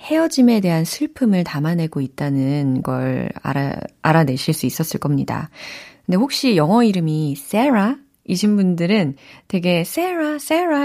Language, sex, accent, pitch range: Korean, female, native, 155-245 Hz